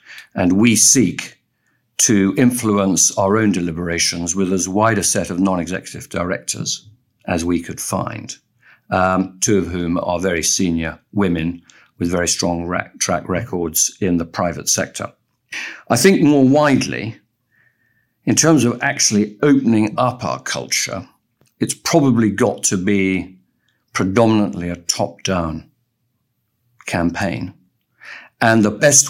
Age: 50-69